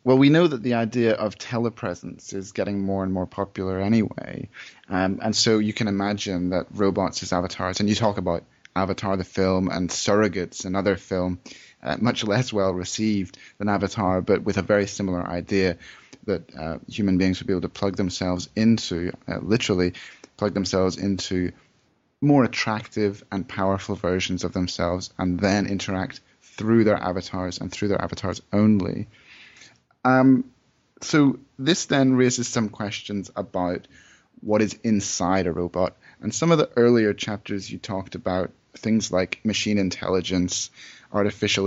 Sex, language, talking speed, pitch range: male, English, 155 wpm, 95-110 Hz